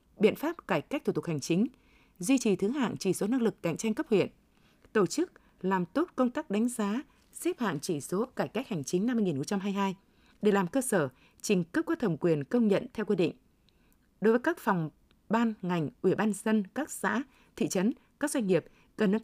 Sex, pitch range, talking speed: female, 185-245 Hz, 220 wpm